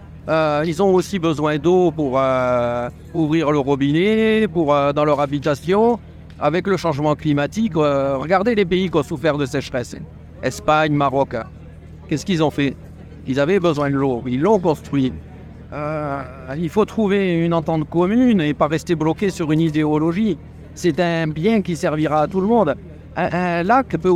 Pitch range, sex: 135-185 Hz, male